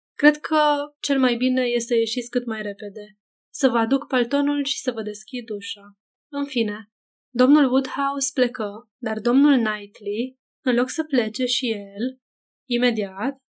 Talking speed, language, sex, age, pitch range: 155 wpm, Romanian, female, 20-39, 220-260 Hz